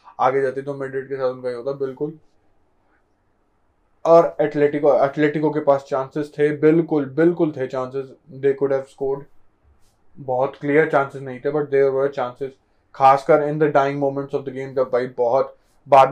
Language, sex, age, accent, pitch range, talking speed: Hindi, male, 20-39, native, 130-150 Hz, 110 wpm